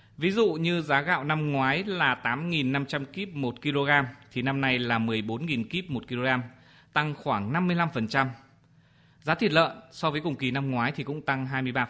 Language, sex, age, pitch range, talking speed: Vietnamese, male, 20-39, 120-155 Hz, 175 wpm